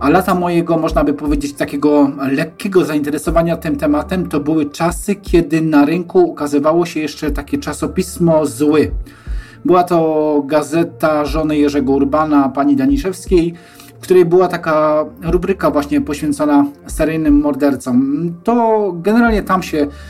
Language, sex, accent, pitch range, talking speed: Polish, male, native, 145-180 Hz, 130 wpm